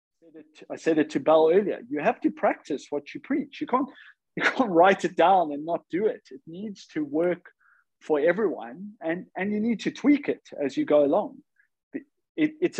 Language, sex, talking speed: English, male, 190 wpm